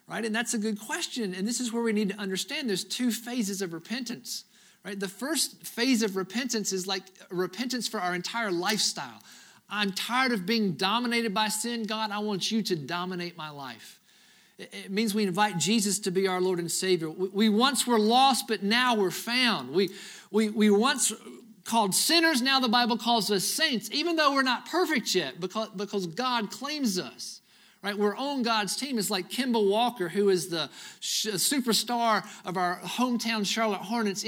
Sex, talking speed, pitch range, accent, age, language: male, 190 wpm, 195-245 Hz, American, 50-69, English